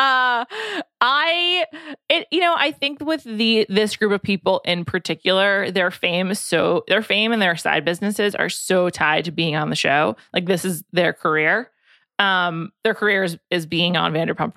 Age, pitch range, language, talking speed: 20-39, 175-220 Hz, English, 190 wpm